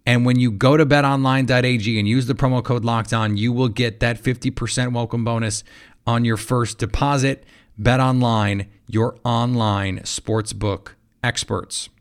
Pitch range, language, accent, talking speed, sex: 110-135 Hz, English, American, 145 wpm, male